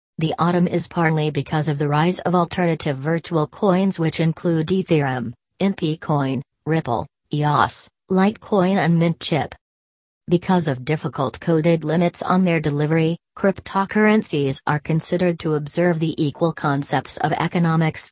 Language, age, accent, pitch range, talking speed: English, 40-59, American, 150-175 Hz, 135 wpm